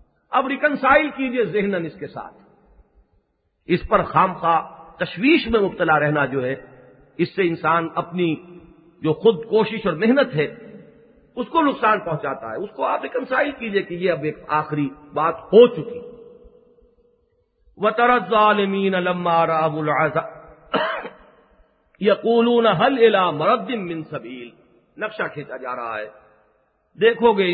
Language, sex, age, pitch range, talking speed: English, male, 50-69, 155-245 Hz, 135 wpm